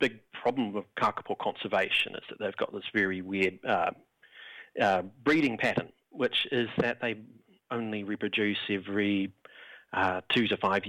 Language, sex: English, male